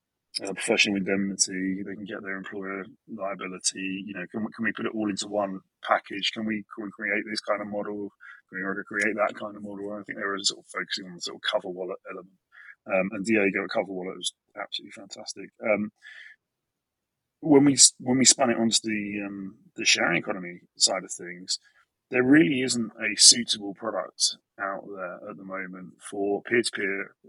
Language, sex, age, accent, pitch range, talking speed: English, male, 20-39, British, 95-105 Hz, 195 wpm